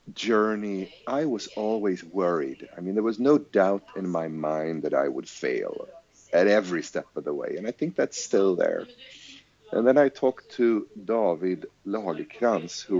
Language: English